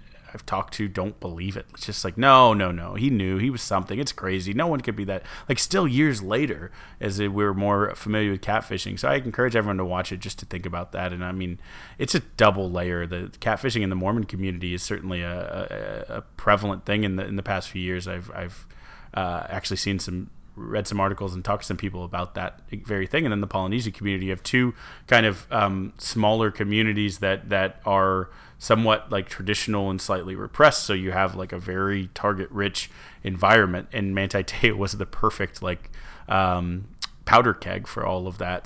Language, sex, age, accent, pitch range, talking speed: English, male, 30-49, American, 95-105 Hz, 215 wpm